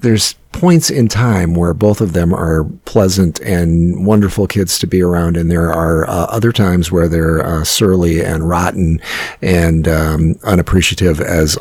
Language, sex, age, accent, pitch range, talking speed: English, male, 50-69, American, 85-110 Hz, 165 wpm